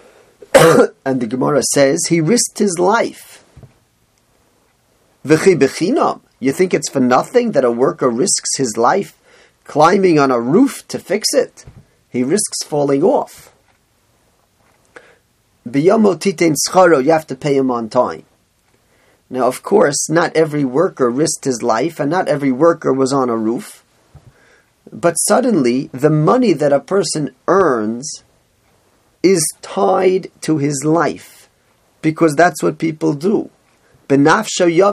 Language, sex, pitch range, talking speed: English, male, 130-175 Hz, 125 wpm